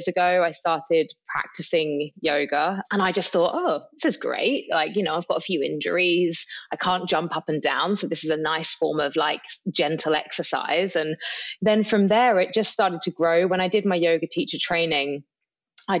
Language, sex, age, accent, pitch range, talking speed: English, female, 20-39, British, 160-195 Hz, 205 wpm